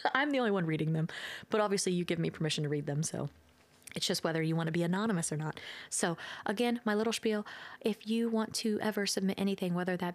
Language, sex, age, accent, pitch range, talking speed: English, female, 20-39, American, 170-210 Hz, 235 wpm